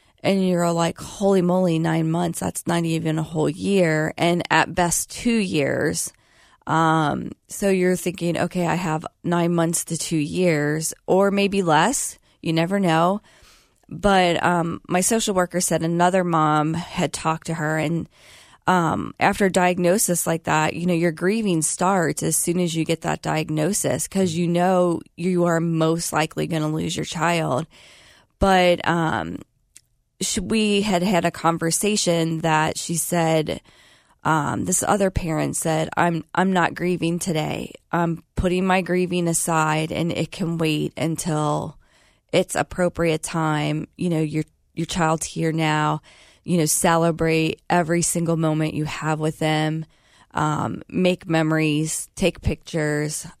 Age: 20-39